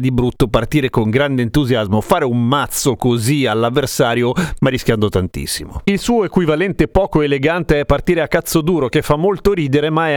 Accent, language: native, Italian